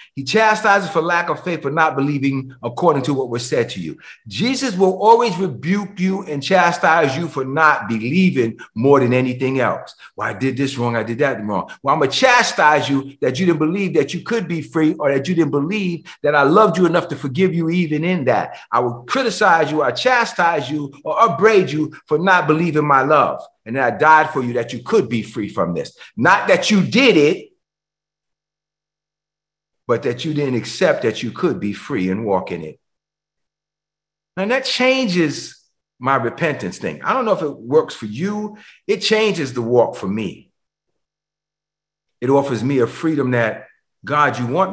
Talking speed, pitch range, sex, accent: 195 wpm, 130-180 Hz, male, American